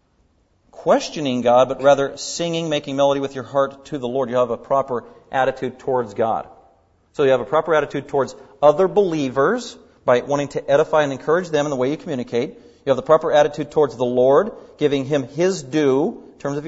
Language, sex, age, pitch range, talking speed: English, male, 40-59, 150-205 Hz, 200 wpm